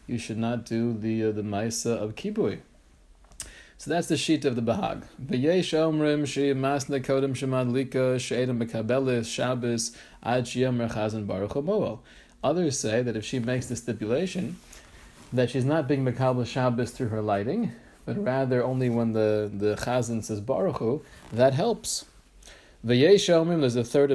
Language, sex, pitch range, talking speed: English, male, 115-155 Hz, 120 wpm